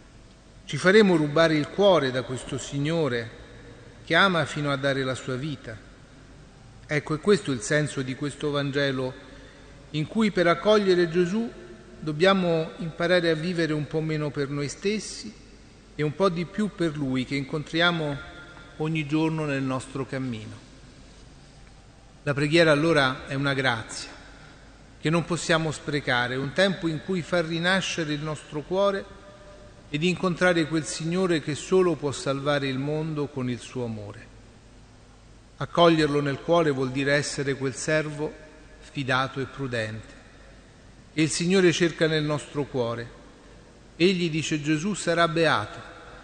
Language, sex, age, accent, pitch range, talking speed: Italian, male, 40-59, native, 130-165 Hz, 140 wpm